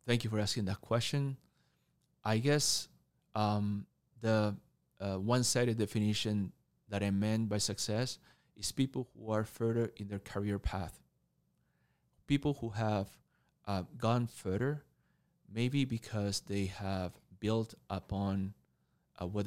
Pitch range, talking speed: 95-110 Hz, 125 wpm